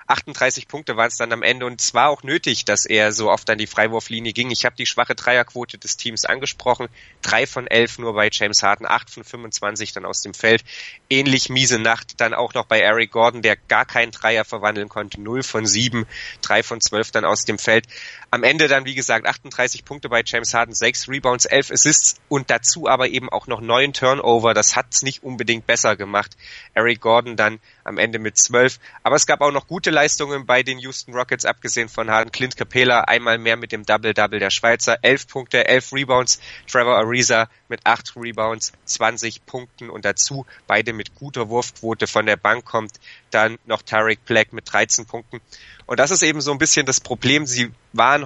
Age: 20-39